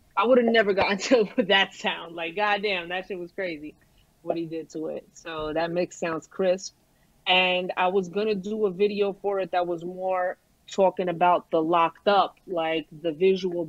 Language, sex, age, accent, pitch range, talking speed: English, female, 30-49, American, 180-225 Hz, 205 wpm